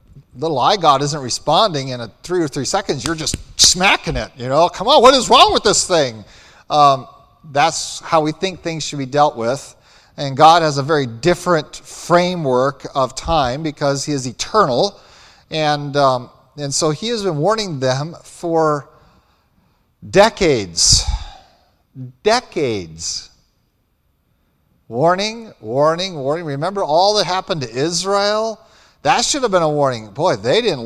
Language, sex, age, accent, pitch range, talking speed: English, male, 40-59, American, 145-195 Hz, 150 wpm